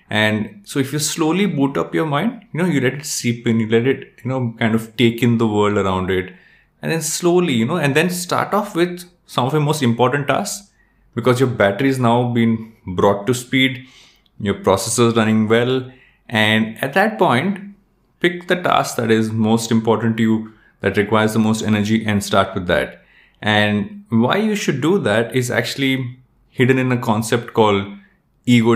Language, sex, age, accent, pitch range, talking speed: English, male, 20-39, Indian, 110-135 Hz, 200 wpm